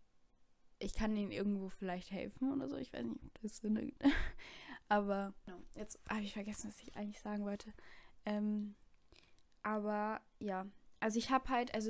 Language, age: German, 10-29